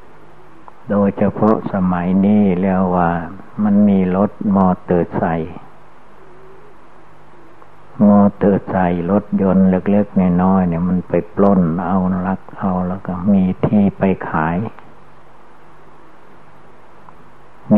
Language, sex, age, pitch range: Thai, male, 60-79, 90-100 Hz